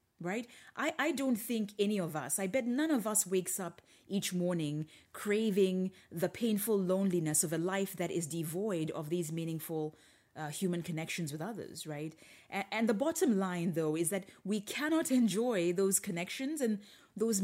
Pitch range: 165-215 Hz